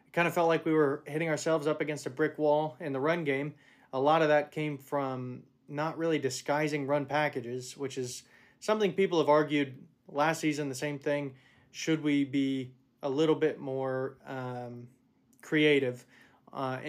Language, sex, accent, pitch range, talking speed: English, male, American, 130-155 Hz, 175 wpm